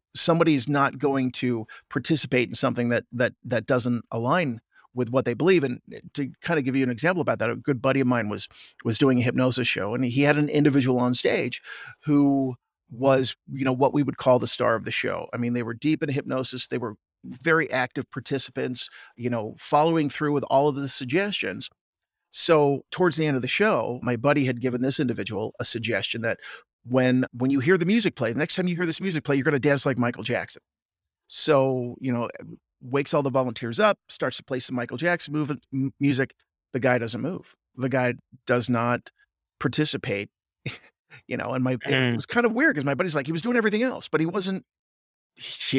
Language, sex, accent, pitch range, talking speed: English, male, American, 125-150 Hz, 215 wpm